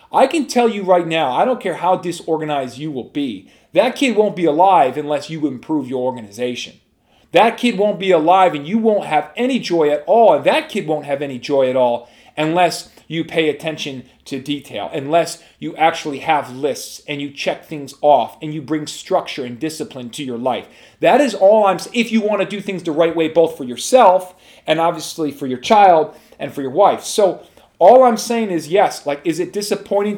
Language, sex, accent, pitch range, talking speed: English, male, American, 150-185 Hz, 210 wpm